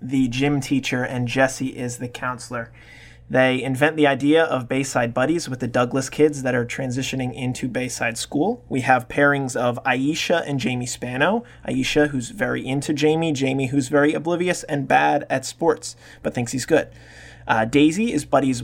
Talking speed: 175 wpm